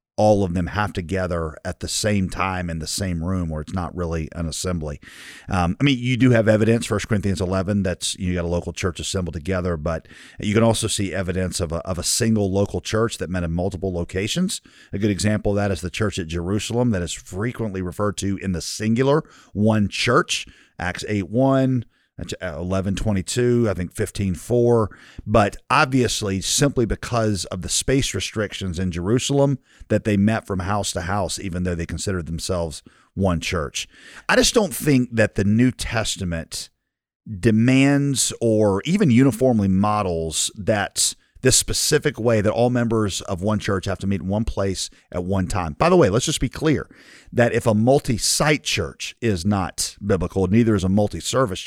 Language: English